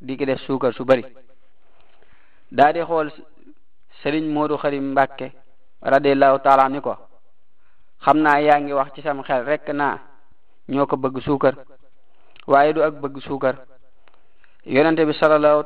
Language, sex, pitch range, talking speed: French, male, 135-150 Hz, 110 wpm